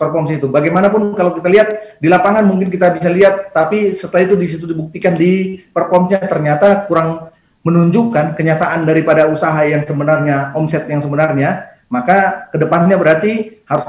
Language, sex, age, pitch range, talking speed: Indonesian, male, 30-49, 145-185 Hz, 145 wpm